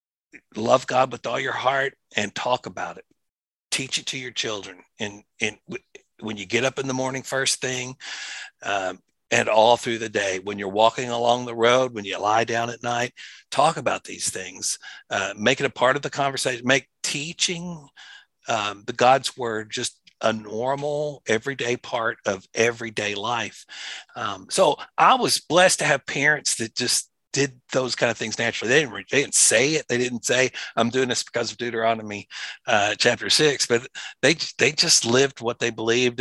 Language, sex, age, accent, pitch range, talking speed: English, male, 60-79, American, 115-135 Hz, 185 wpm